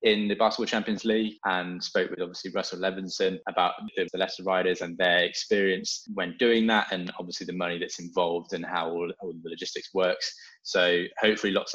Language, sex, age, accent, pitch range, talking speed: English, male, 20-39, British, 90-115 Hz, 190 wpm